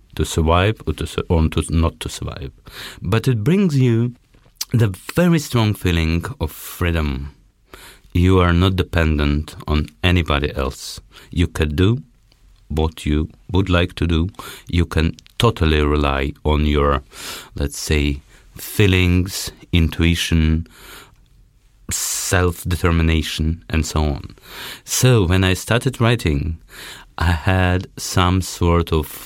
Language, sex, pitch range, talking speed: Danish, male, 75-95 Hz, 120 wpm